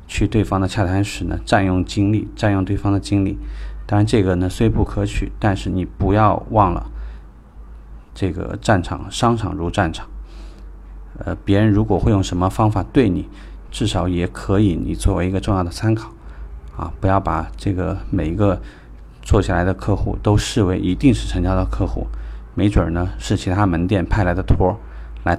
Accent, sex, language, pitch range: native, male, Chinese, 85-105 Hz